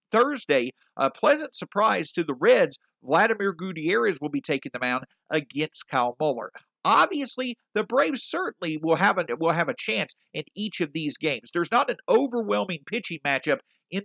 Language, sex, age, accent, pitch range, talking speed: English, male, 50-69, American, 155-215 Hz, 170 wpm